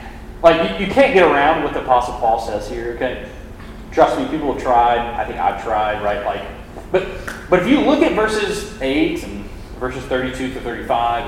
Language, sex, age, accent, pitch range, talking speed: English, male, 30-49, American, 120-175 Hz, 190 wpm